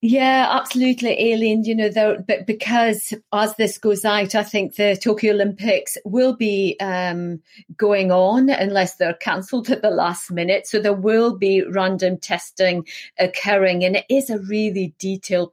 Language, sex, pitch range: English, female, 180-220 Hz